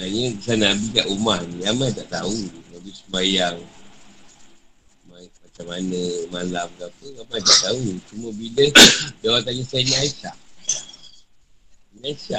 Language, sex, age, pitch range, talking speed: Malay, male, 60-79, 85-135 Hz, 120 wpm